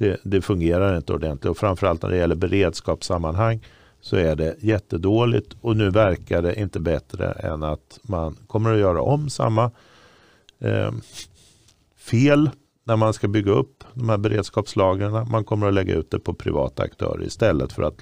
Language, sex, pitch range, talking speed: Swedish, male, 95-115 Hz, 170 wpm